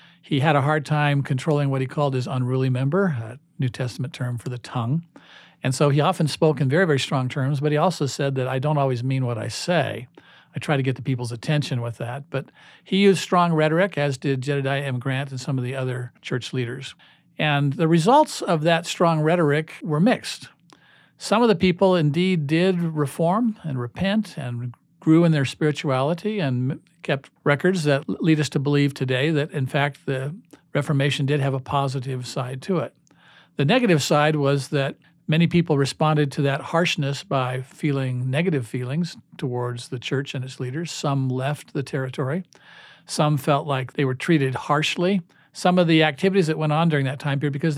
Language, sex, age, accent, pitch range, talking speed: English, male, 50-69, American, 130-160 Hz, 195 wpm